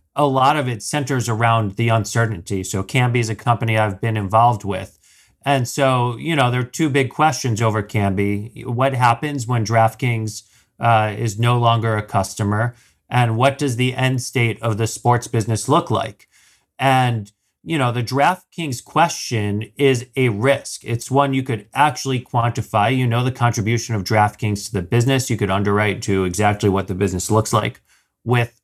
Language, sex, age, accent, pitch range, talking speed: English, male, 40-59, American, 110-135 Hz, 180 wpm